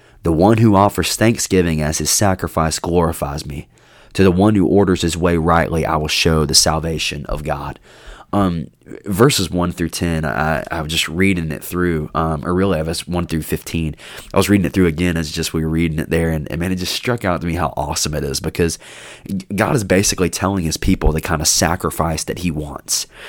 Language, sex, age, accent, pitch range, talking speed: English, male, 20-39, American, 80-95 Hz, 220 wpm